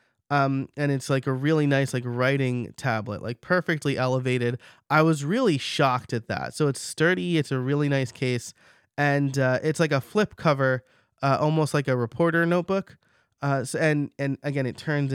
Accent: American